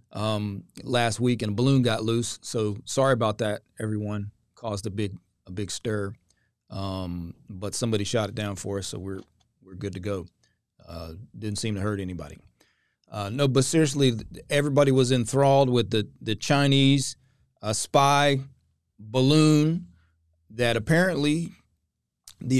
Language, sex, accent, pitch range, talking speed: English, male, American, 105-130 Hz, 150 wpm